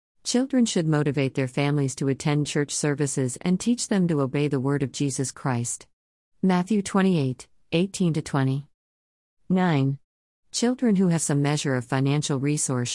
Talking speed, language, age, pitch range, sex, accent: 145 wpm, English, 40-59, 130-170 Hz, female, American